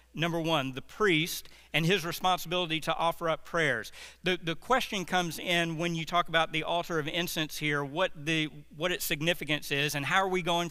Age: 50-69